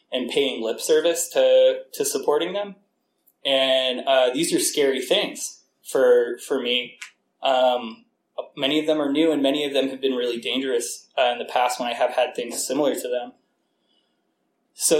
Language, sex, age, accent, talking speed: English, male, 20-39, American, 175 wpm